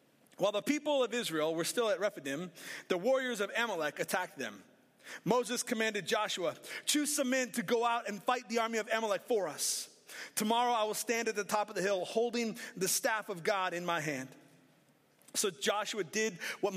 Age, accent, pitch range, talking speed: 30-49, American, 195-235 Hz, 195 wpm